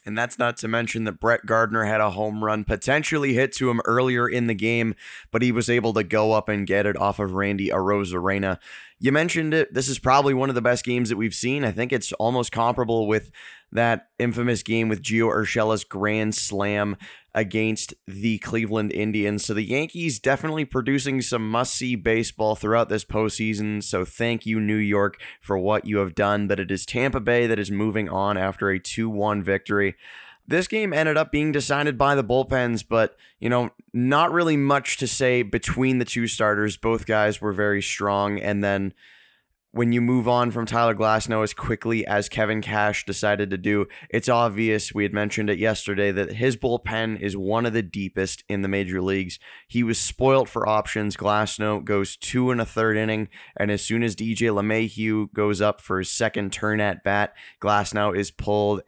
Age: 20-39